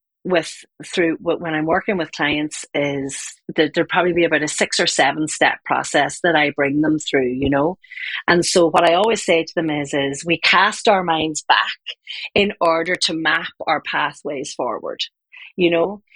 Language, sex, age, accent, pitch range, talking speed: English, female, 40-59, Irish, 160-195 Hz, 185 wpm